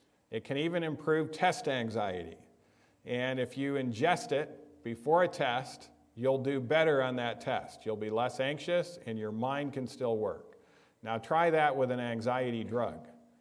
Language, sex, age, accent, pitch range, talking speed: English, male, 50-69, American, 110-135 Hz, 165 wpm